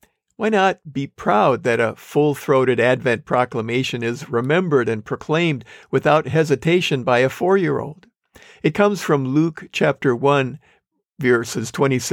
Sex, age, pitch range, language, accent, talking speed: male, 50-69, 125-155 Hz, English, American, 125 wpm